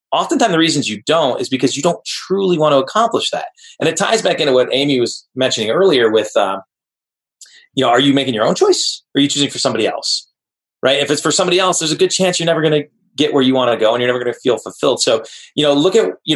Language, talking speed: English, 270 wpm